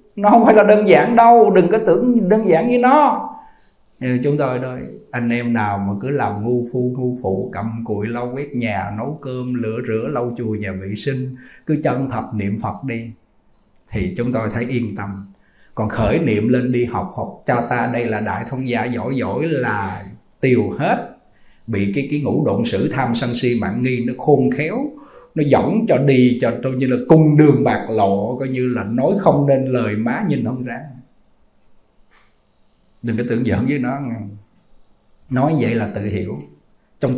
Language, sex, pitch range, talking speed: Vietnamese, male, 115-140 Hz, 195 wpm